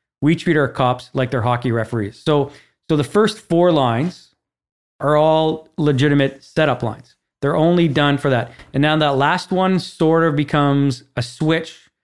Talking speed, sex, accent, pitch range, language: 170 wpm, male, American, 125-150 Hz, English